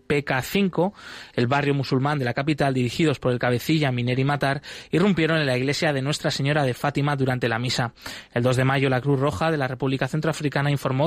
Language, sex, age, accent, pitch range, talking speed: Spanish, male, 20-39, Spanish, 130-155 Hz, 200 wpm